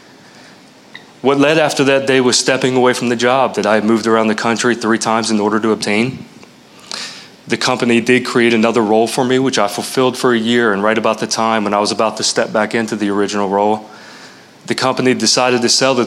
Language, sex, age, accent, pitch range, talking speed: English, male, 30-49, American, 110-130 Hz, 225 wpm